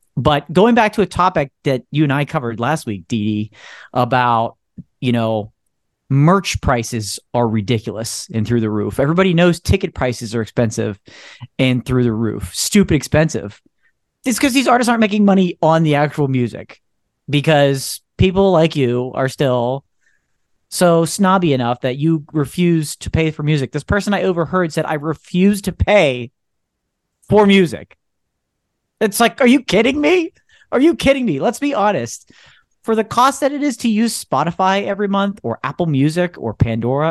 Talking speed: 170 wpm